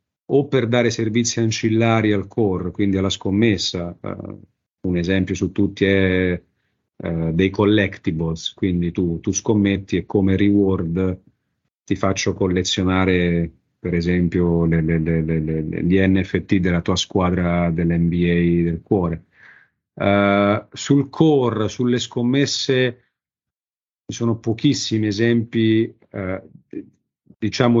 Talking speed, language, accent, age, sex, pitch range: 120 wpm, Italian, native, 40-59, male, 90-110 Hz